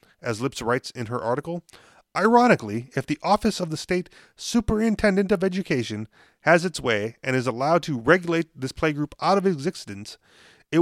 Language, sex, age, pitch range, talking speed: English, male, 30-49, 130-175 Hz, 165 wpm